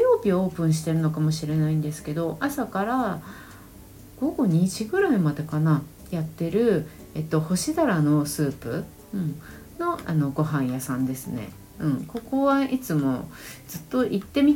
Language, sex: Japanese, female